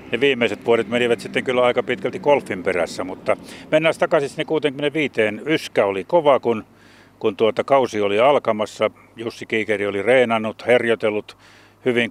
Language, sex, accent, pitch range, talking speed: Finnish, male, native, 100-120 Hz, 150 wpm